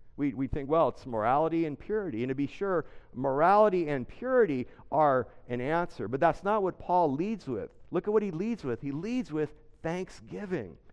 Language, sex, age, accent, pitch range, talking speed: English, male, 50-69, American, 135-185 Hz, 190 wpm